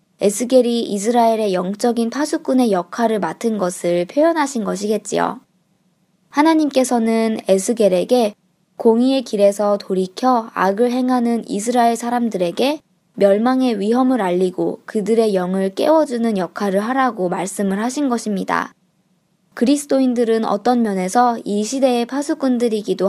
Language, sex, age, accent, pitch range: Korean, male, 20-39, native, 190-245 Hz